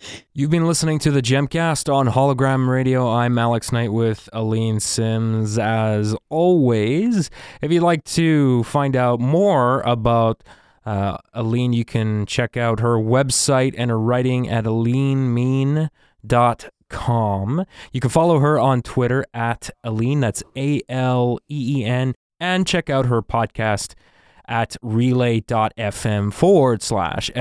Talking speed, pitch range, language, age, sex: 125 wpm, 110-135 Hz, English, 20-39, male